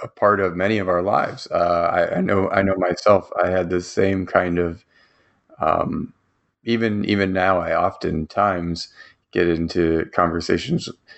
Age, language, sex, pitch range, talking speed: 30-49, English, male, 90-100 Hz, 155 wpm